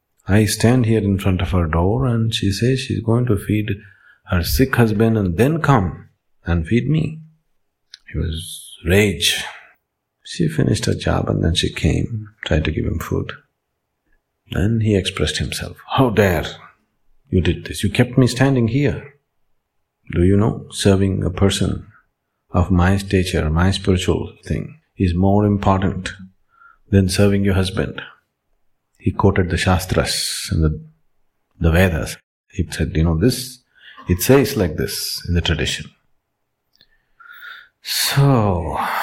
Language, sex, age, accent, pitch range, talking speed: English, male, 50-69, Indian, 85-110 Hz, 145 wpm